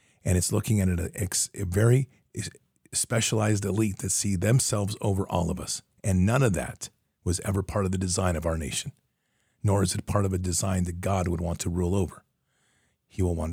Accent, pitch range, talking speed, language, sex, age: American, 90-110 Hz, 205 wpm, English, male, 40-59